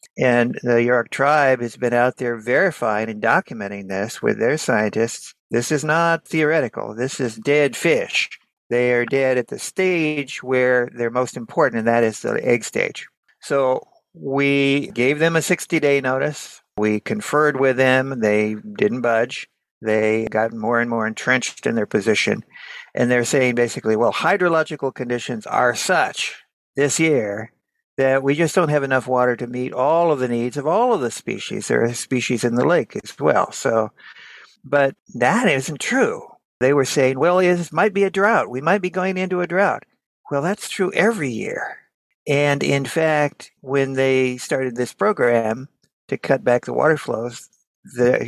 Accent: American